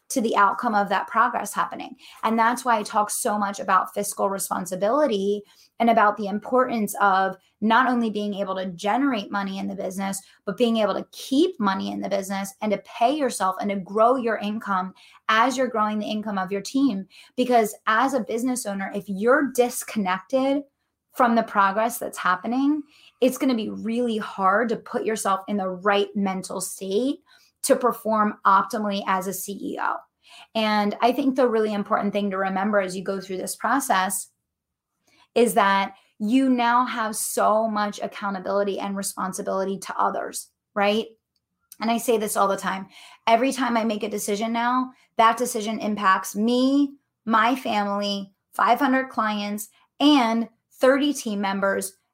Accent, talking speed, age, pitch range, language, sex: American, 165 wpm, 20-39, 195-240 Hz, English, female